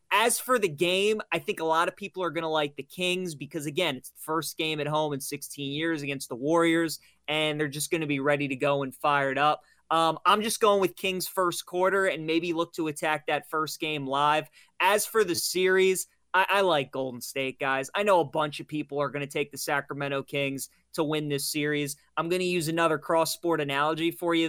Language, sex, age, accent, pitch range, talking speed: English, male, 20-39, American, 140-165 Hz, 240 wpm